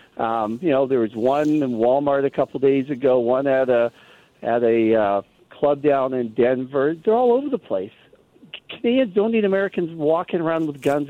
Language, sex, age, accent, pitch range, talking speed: English, male, 50-69, American, 130-180 Hz, 195 wpm